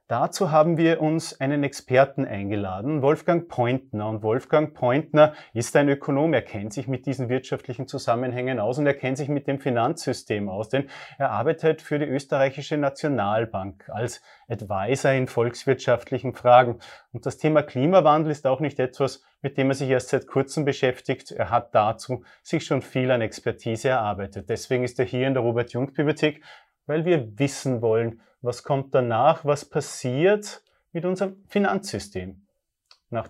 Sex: male